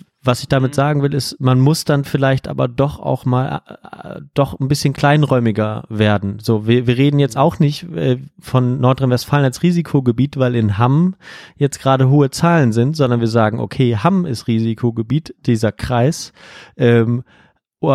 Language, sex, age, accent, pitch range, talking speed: German, male, 30-49, German, 120-140 Hz, 165 wpm